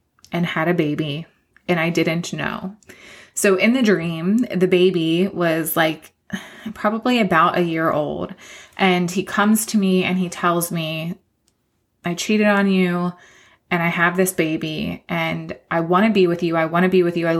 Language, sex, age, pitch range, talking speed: English, female, 20-39, 165-190 Hz, 185 wpm